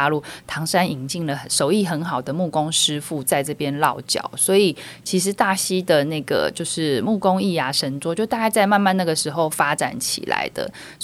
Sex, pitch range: female, 155-200 Hz